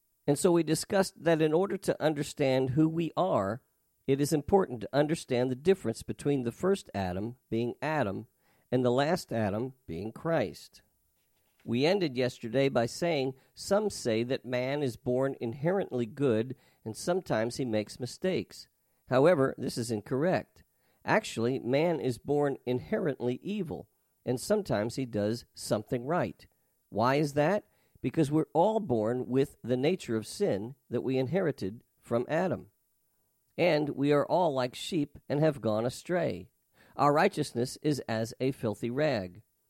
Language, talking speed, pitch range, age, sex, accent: English, 150 wpm, 120-155 Hz, 50-69, male, American